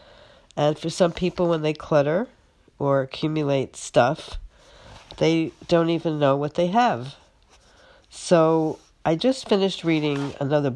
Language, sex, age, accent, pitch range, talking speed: English, female, 60-79, American, 135-160 Hz, 130 wpm